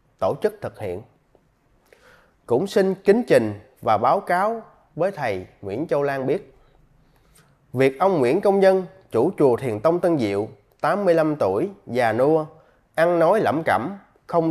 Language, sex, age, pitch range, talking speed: Vietnamese, male, 20-39, 130-175 Hz, 155 wpm